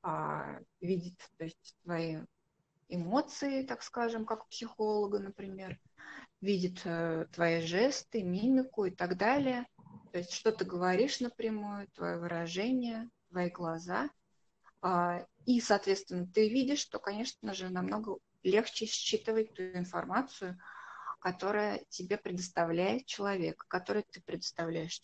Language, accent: Russian, native